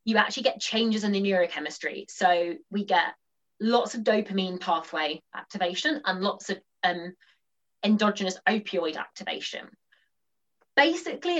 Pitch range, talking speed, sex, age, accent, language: 180-230 Hz, 120 wpm, female, 20-39, British, English